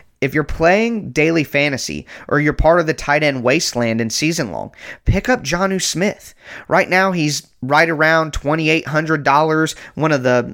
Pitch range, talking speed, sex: 125-160 Hz, 165 wpm, male